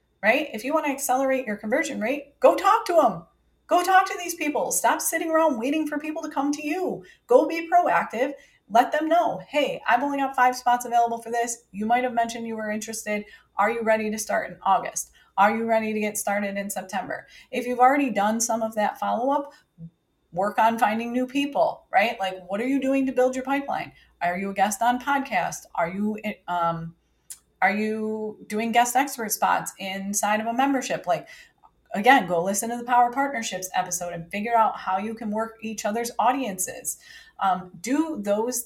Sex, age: female, 30-49